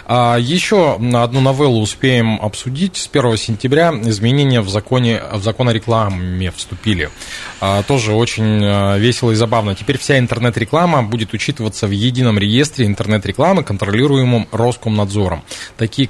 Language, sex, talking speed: Russian, male, 120 wpm